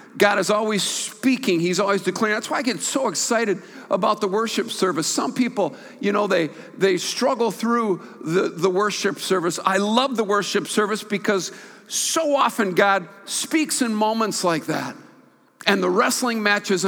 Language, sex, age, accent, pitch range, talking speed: English, male, 50-69, American, 175-220 Hz, 165 wpm